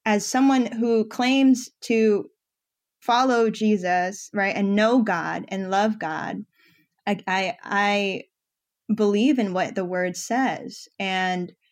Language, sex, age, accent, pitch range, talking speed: English, female, 10-29, American, 180-225 Hz, 125 wpm